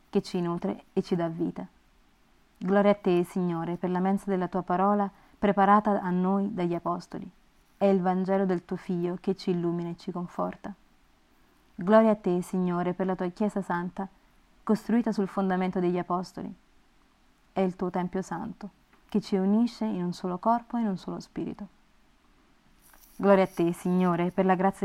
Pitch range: 180-200 Hz